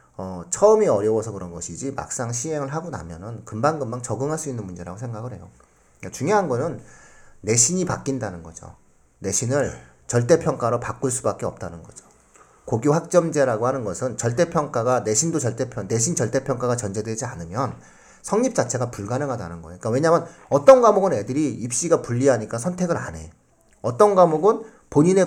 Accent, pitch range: native, 105-165 Hz